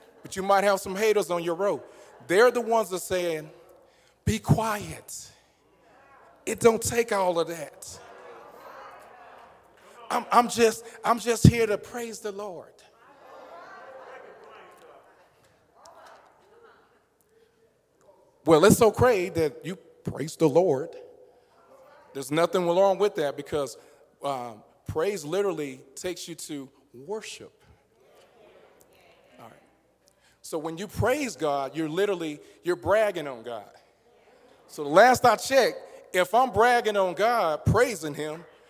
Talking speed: 120 wpm